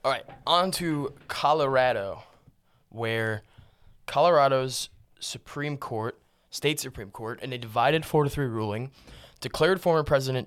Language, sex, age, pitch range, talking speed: English, male, 20-39, 115-140 Hz, 125 wpm